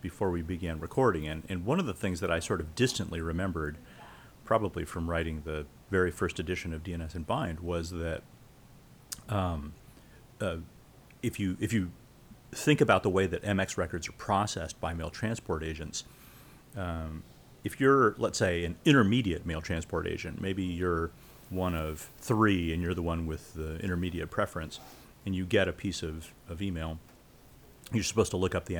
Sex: male